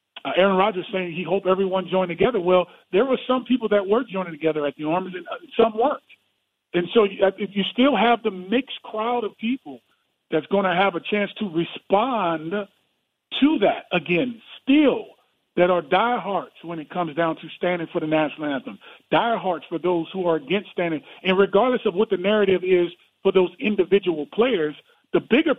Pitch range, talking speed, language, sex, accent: 170-220 Hz, 185 wpm, English, male, American